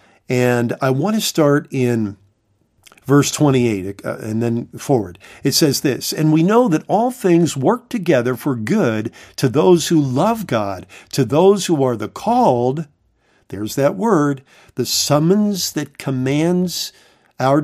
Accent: American